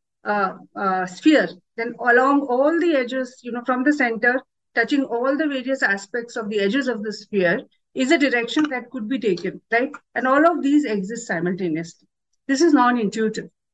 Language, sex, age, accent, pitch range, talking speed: English, female, 50-69, Indian, 210-275 Hz, 185 wpm